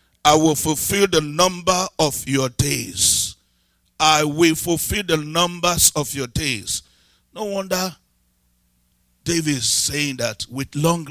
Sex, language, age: male, English, 50-69